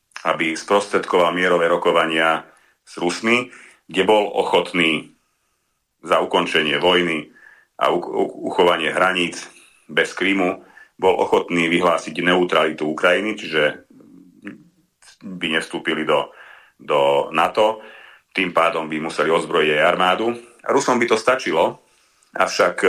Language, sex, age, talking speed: Slovak, male, 40-59, 105 wpm